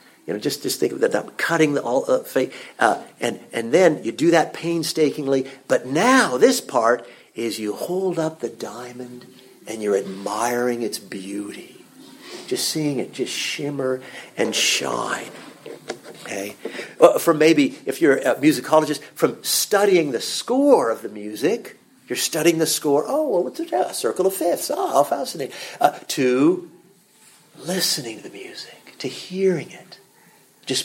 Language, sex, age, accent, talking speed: English, male, 50-69, American, 165 wpm